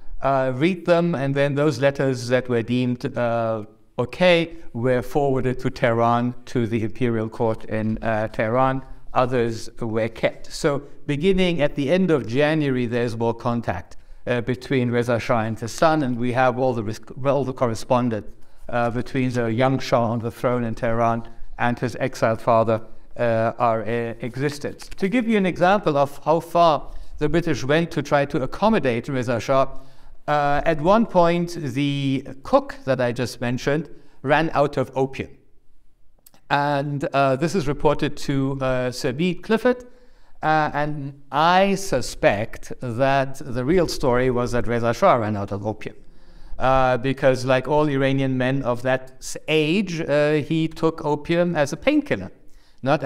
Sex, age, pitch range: male, 60-79, 120-150 Hz